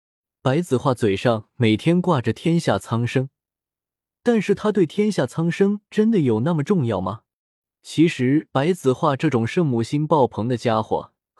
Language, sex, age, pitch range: Chinese, male, 20-39, 115-165 Hz